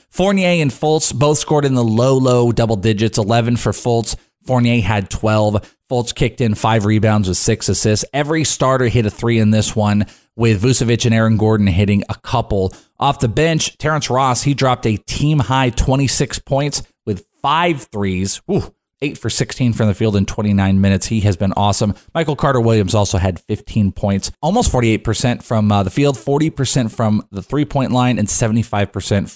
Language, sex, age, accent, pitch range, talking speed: English, male, 30-49, American, 105-135 Hz, 180 wpm